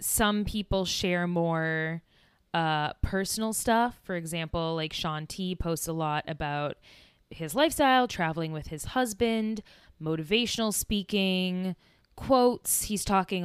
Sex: female